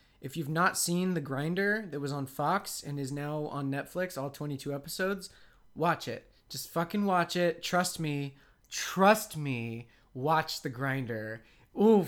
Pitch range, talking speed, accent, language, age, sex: 135-180 Hz, 160 wpm, American, English, 20-39, male